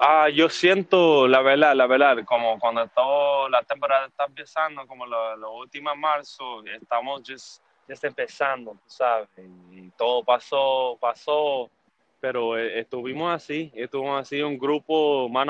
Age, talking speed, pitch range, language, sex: 20-39, 140 wpm, 115-140 Hz, Spanish, male